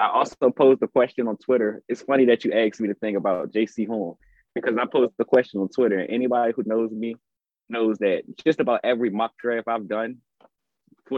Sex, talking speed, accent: male, 215 wpm, American